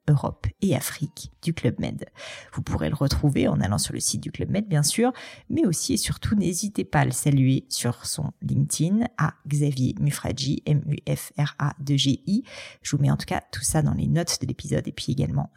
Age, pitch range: 40-59, 135-155 Hz